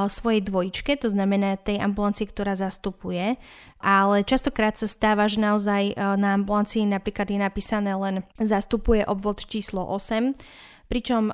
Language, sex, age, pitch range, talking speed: Slovak, female, 20-39, 195-215 Hz, 130 wpm